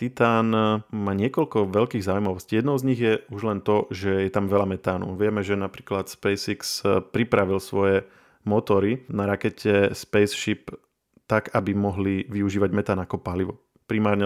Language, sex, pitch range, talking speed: Slovak, male, 100-110 Hz, 145 wpm